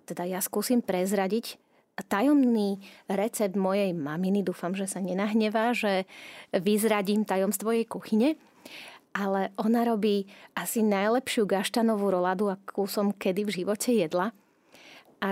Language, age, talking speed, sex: Slovak, 30-49, 125 wpm, female